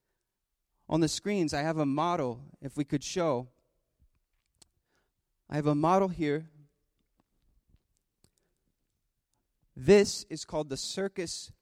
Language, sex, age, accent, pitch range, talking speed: English, male, 30-49, American, 145-185 Hz, 110 wpm